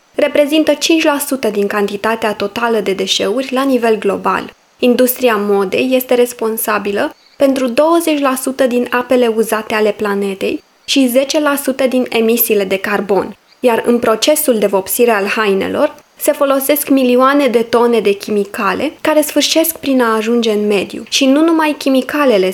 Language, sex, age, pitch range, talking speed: Romanian, female, 20-39, 215-275 Hz, 140 wpm